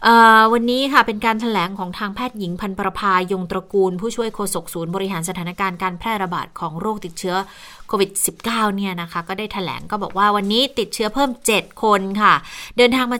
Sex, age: female, 20-39